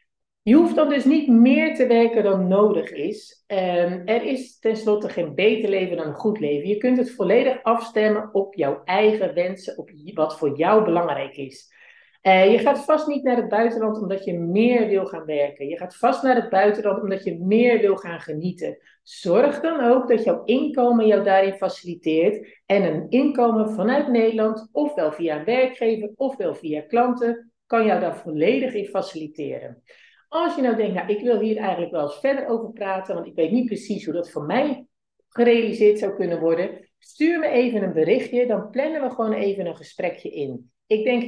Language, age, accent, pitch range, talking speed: Dutch, 50-69, Dutch, 190-250 Hz, 185 wpm